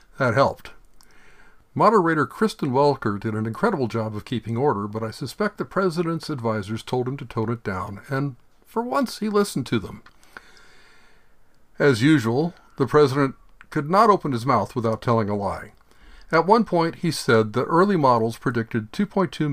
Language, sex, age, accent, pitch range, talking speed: English, male, 60-79, American, 115-155 Hz, 165 wpm